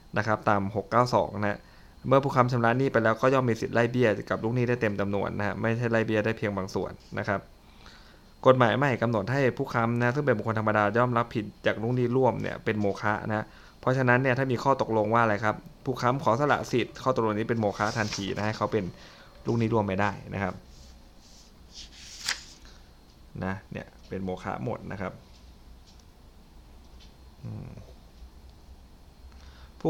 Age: 20-39